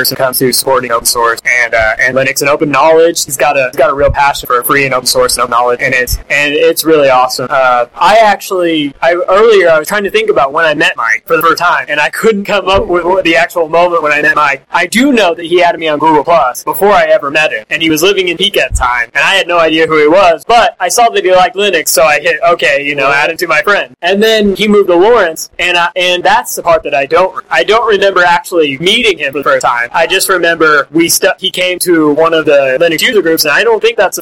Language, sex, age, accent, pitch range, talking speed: English, male, 20-39, American, 150-195 Hz, 285 wpm